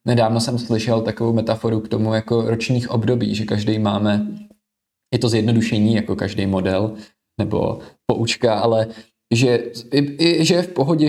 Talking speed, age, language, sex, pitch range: 155 wpm, 20-39, Czech, male, 110-125 Hz